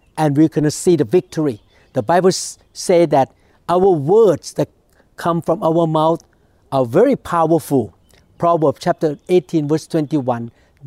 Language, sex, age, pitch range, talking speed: English, male, 60-79, 135-190 Hz, 130 wpm